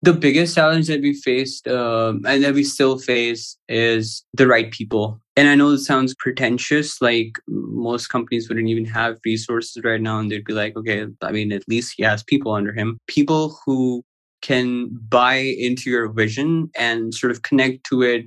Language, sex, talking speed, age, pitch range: English, male, 190 wpm, 20-39, 115-140 Hz